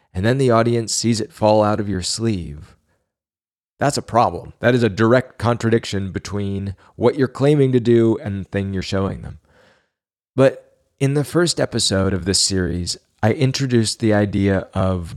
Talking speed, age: 175 wpm, 30-49